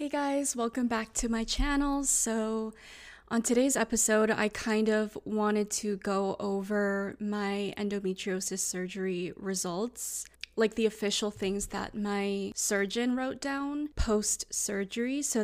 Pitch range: 195-230 Hz